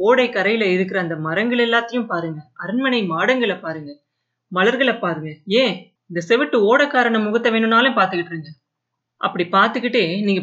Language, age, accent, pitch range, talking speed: Tamil, 30-49, native, 175-235 Hz, 130 wpm